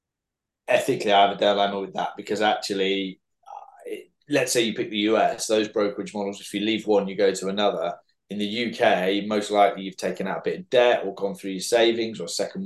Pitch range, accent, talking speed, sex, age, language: 100-115 Hz, British, 225 wpm, male, 20-39, English